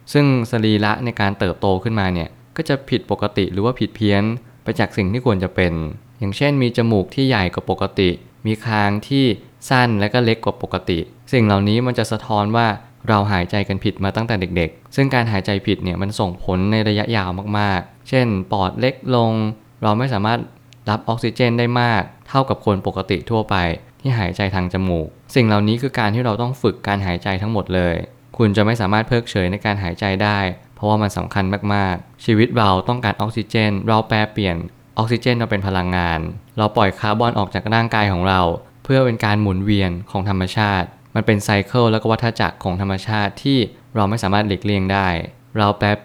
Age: 20-39